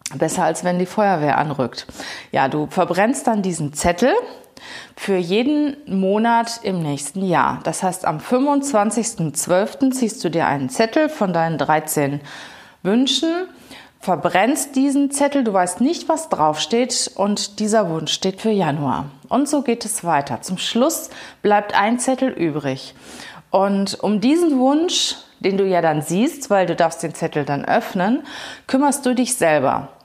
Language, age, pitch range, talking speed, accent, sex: German, 30-49, 180-255 Hz, 150 wpm, German, female